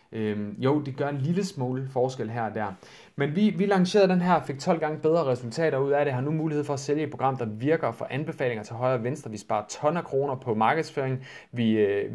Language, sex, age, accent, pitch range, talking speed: Danish, male, 30-49, native, 115-150 Hz, 250 wpm